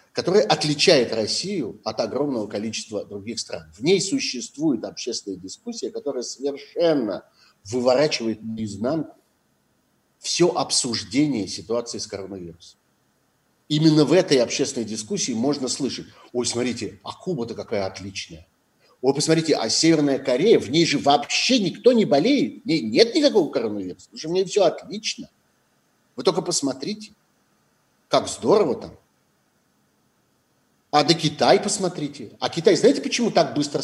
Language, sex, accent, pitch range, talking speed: Russian, male, native, 110-170 Hz, 130 wpm